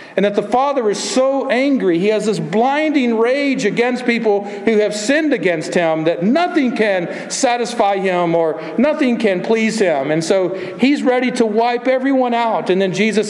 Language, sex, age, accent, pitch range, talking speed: English, male, 50-69, American, 175-240 Hz, 180 wpm